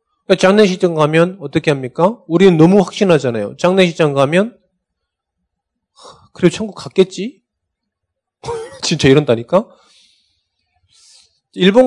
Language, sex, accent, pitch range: Korean, male, native, 115-180 Hz